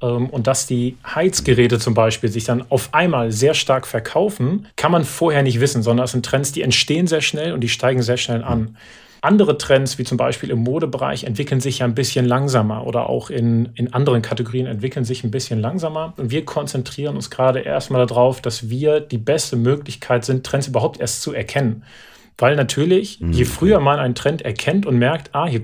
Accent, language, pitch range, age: German, German, 120-145 Hz, 30-49